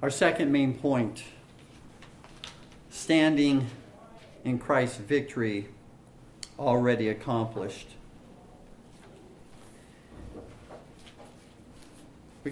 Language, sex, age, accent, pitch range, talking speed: English, male, 50-69, American, 120-150 Hz, 55 wpm